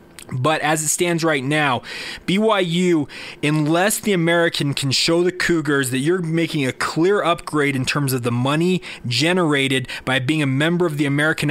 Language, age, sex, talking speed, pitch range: English, 20-39, male, 170 wpm, 135-165 Hz